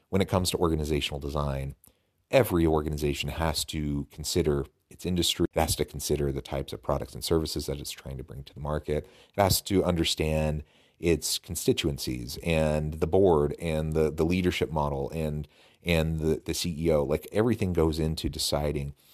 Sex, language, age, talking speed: male, English, 40-59, 170 wpm